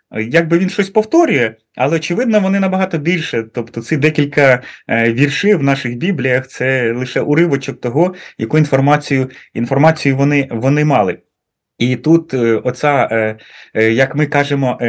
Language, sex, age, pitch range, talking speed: Ukrainian, male, 20-39, 110-145 Hz, 135 wpm